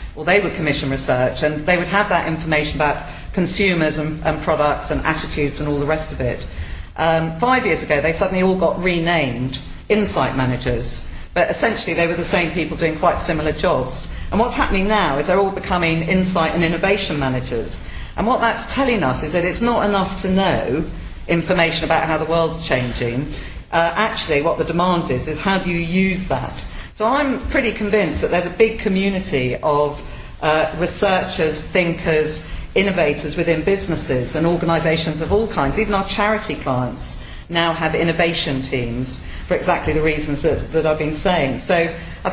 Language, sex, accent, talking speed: English, female, British, 180 wpm